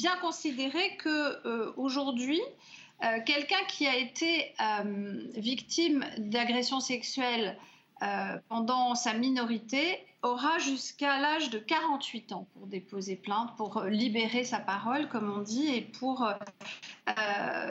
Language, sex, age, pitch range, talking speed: French, female, 40-59, 220-280 Hz, 115 wpm